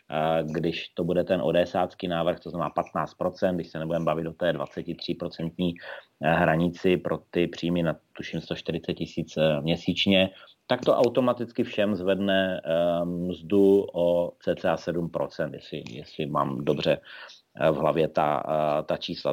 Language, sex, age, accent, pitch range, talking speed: Czech, male, 40-59, native, 90-110 Hz, 130 wpm